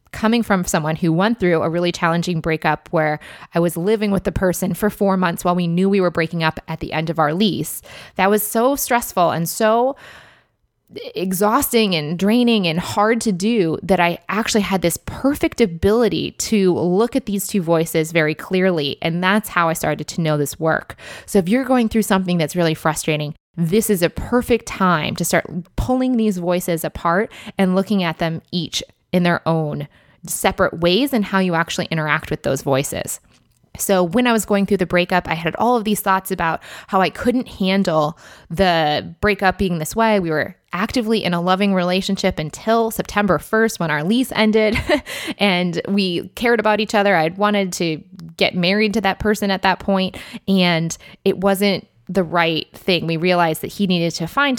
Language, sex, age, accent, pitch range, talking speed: English, female, 20-39, American, 165-210 Hz, 195 wpm